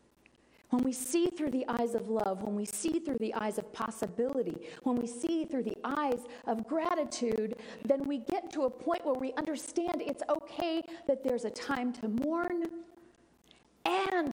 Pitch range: 220-290 Hz